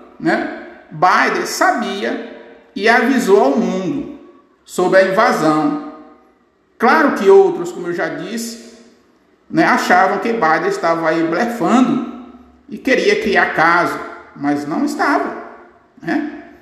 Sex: male